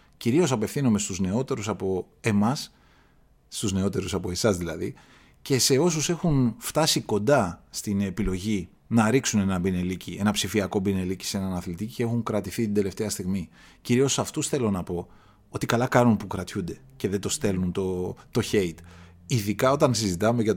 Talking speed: 165 wpm